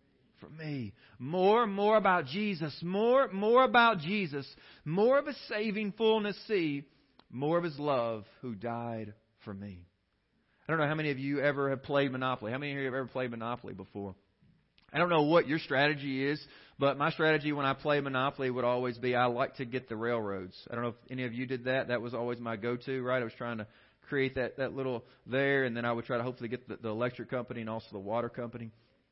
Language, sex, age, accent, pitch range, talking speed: English, male, 40-59, American, 110-145 Hz, 225 wpm